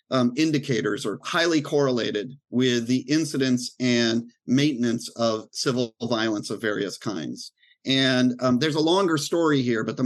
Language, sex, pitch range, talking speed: English, male, 120-165 Hz, 150 wpm